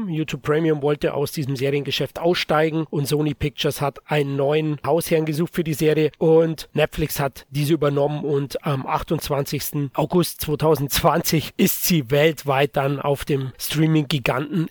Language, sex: German, male